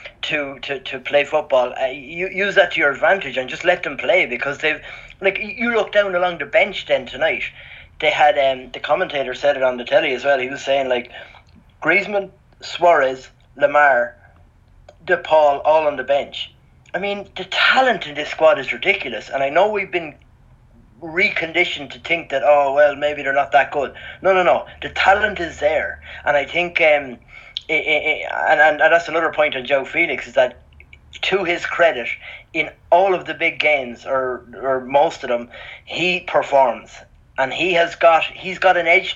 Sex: male